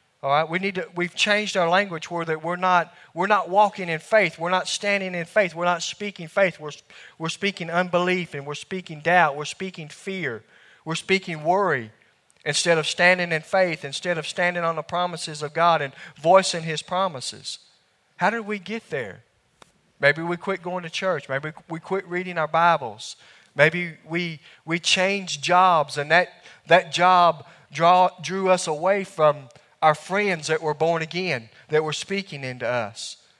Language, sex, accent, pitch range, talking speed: English, male, American, 155-190 Hz, 180 wpm